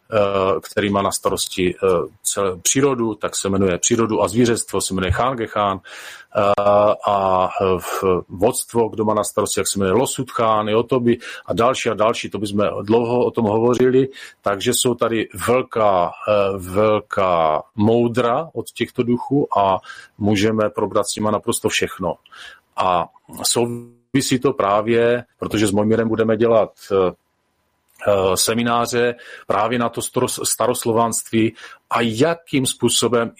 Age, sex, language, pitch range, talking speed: 40-59, male, Czech, 105-120 Hz, 125 wpm